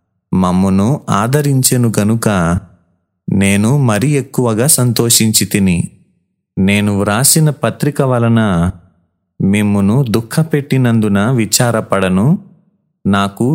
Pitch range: 100-130 Hz